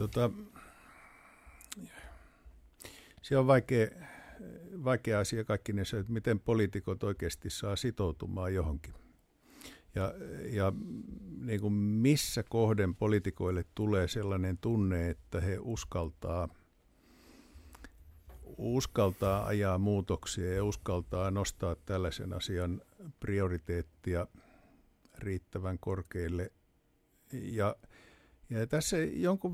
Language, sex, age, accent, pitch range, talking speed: Finnish, male, 60-79, native, 95-120 Hz, 85 wpm